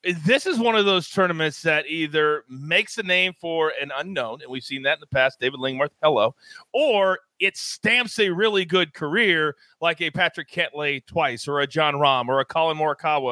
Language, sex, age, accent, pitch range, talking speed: English, male, 40-59, American, 150-220 Hz, 200 wpm